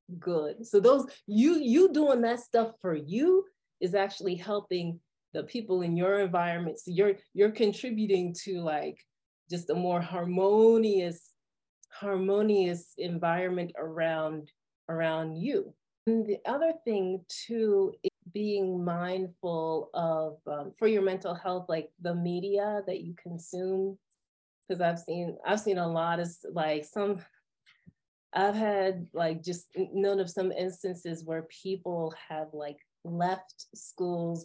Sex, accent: female, American